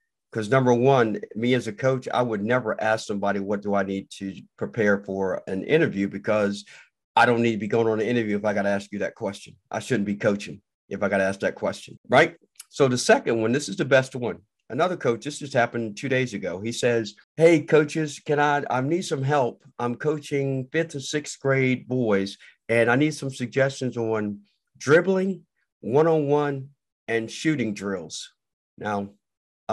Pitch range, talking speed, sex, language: 105-135 Hz, 200 wpm, male, English